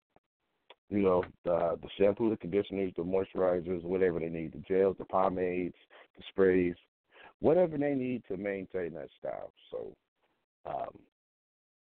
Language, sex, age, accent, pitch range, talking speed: English, male, 50-69, American, 90-115 Hz, 135 wpm